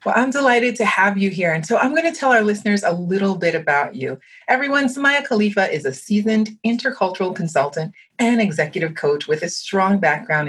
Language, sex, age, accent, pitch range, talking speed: English, female, 30-49, American, 165-230 Hz, 200 wpm